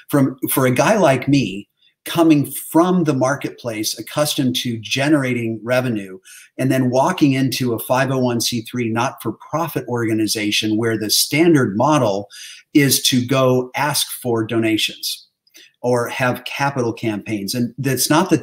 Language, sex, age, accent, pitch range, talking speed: English, male, 50-69, American, 115-140 Hz, 130 wpm